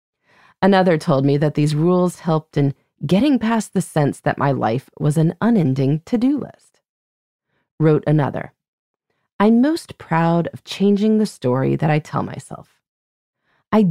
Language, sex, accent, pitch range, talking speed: English, female, American, 140-205 Hz, 145 wpm